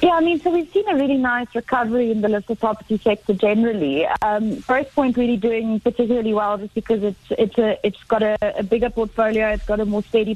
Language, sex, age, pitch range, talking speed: English, female, 30-49, 205-230 Hz, 230 wpm